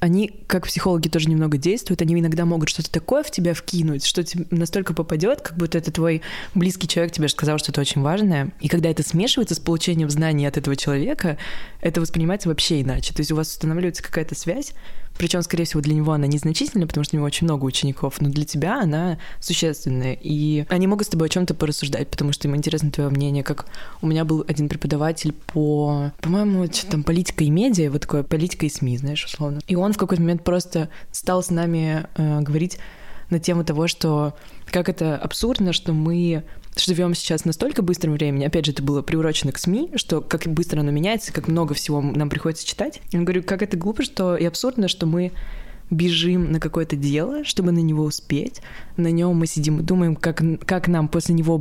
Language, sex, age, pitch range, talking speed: Russian, female, 20-39, 155-180 Hz, 205 wpm